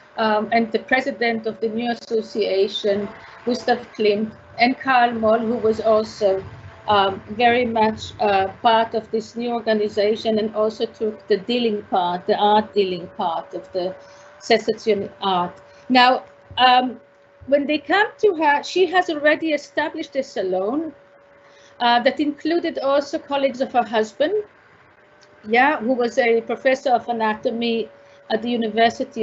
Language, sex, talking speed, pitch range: English, female, 145 wpm, 215-285 Hz